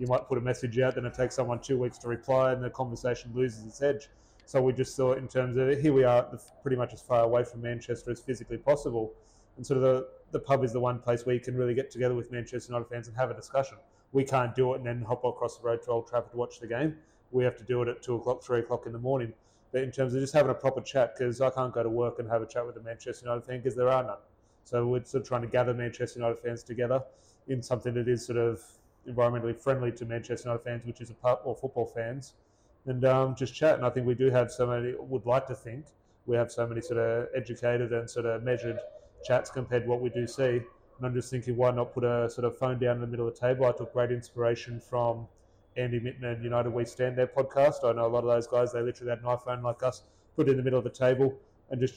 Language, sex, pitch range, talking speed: English, male, 120-130 Hz, 280 wpm